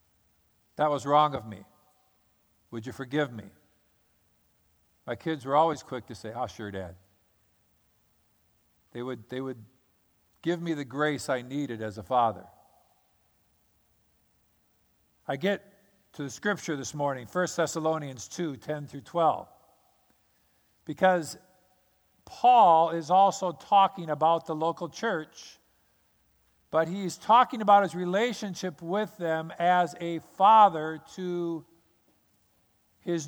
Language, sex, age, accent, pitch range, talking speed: English, male, 50-69, American, 130-185 Hz, 125 wpm